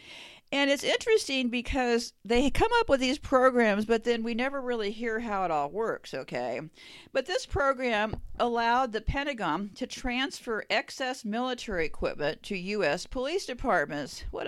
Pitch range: 195-265 Hz